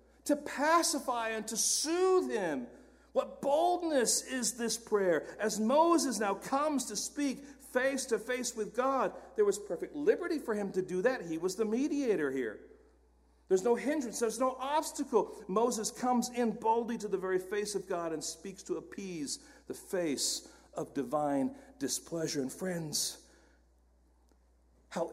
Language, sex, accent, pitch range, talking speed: English, male, American, 175-265 Hz, 155 wpm